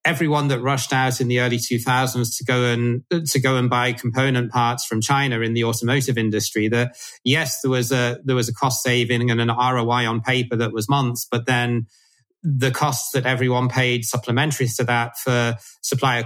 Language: English